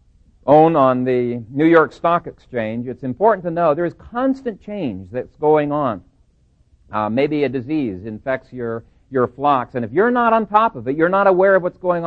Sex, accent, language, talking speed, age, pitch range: male, American, English, 200 wpm, 50-69, 120-175 Hz